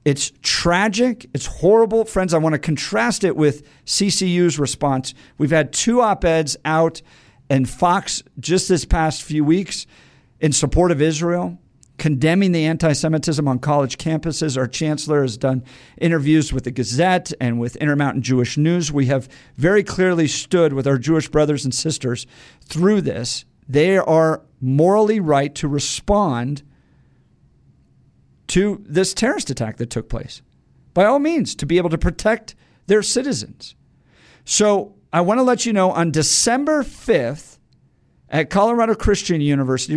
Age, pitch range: 50-69, 140-190 Hz